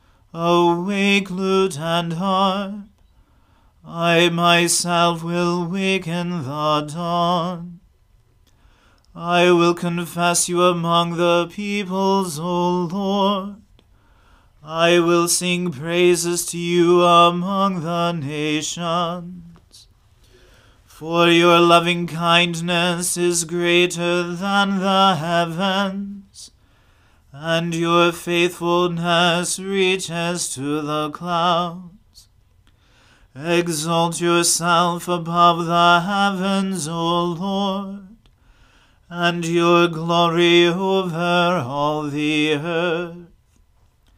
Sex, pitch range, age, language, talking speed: male, 165-175 Hz, 30-49, English, 80 wpm